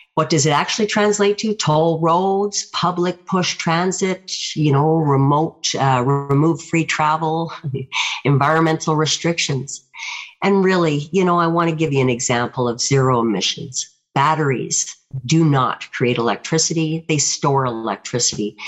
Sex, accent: female, American